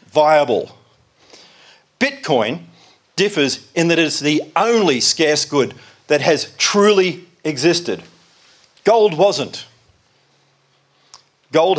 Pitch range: 125-165 Hz